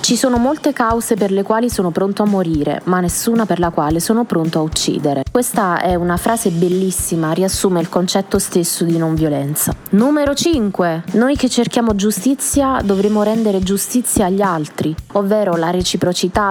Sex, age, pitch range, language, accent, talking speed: female, 20-39, 165-205 Hz, Italian, native, 165 wpm